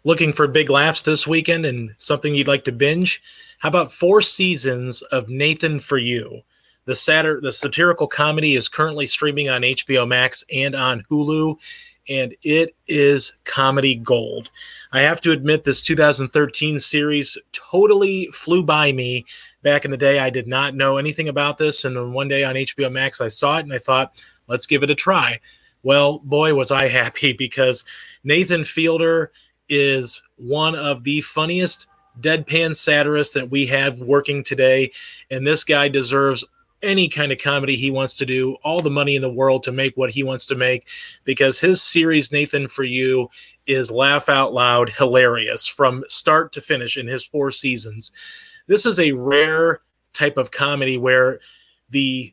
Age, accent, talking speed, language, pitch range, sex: 30-49, American, 175 wpm, English, 130-155 Hz, male